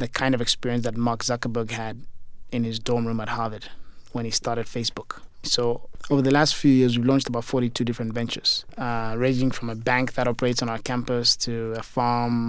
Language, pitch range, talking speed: English, 115-125 Hz, 205 wpm